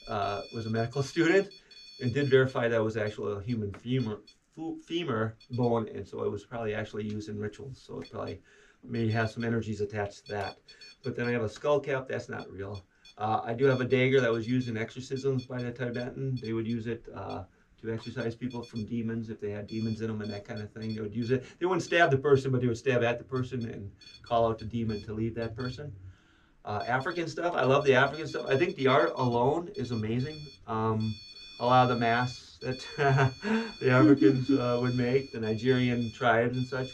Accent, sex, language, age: American, male, English, 40-59